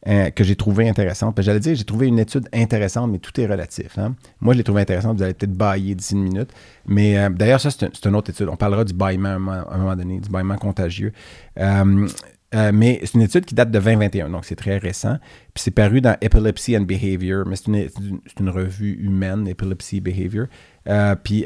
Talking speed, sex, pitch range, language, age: 240 wpm, male, 95-110 Hz, French, 40-59